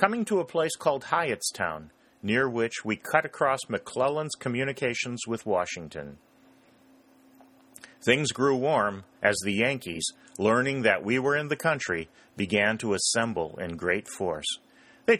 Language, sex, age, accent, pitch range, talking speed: English, male, 40-59, American, 95-135 Hz, 140 wpm